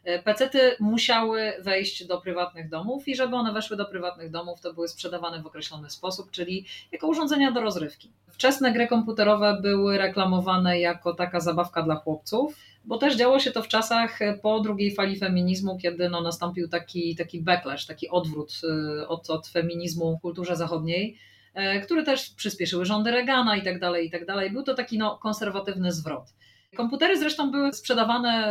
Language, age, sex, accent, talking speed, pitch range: Polish, 30-49, female, native, 160 wpm, 170-210 Hz